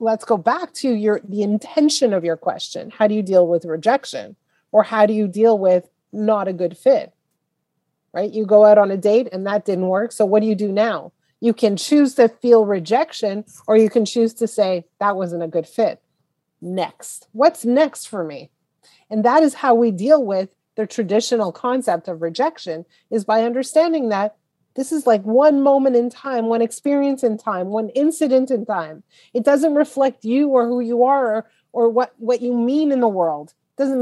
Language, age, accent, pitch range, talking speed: English, 30-49, American, 190-250 Hz, 205 wpm